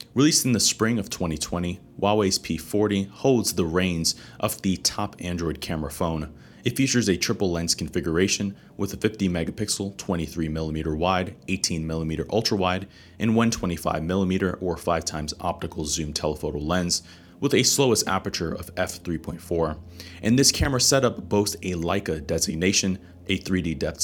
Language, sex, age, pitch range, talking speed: English, male, 30-49, 80-105 Hz, 135 wpm